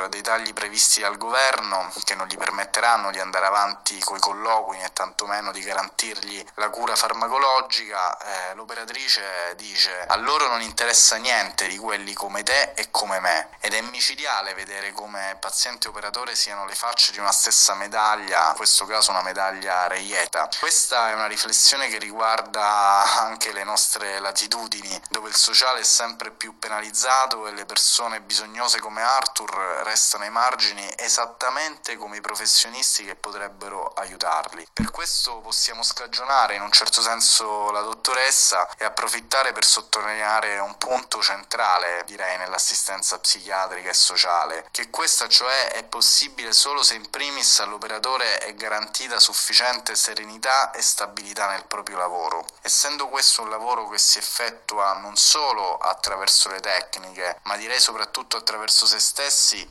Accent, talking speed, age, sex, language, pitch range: native, 150 wpm, 20-39, male, Italian, 100-115 Hz